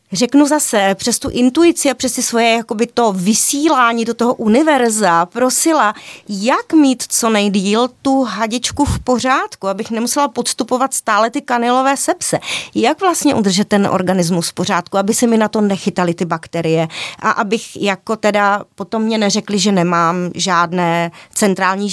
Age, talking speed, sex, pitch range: 30-49, 155 wpm, female, 190-255 Hz